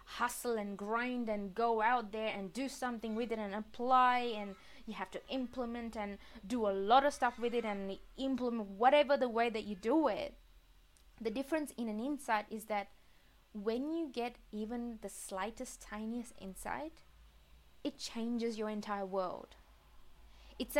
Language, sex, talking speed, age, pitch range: English, female, 165 wpm, 20-39, 215-260 Hz